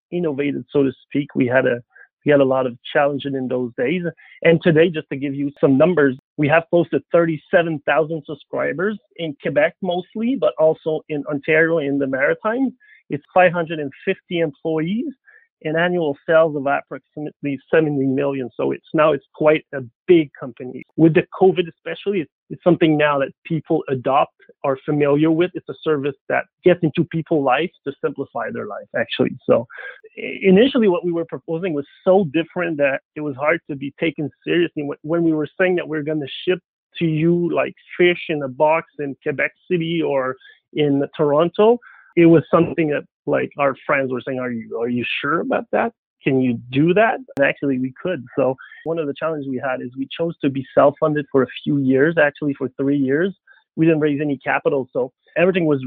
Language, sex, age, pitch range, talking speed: English, male, 30-49, 140-170 Hz, 190 wpm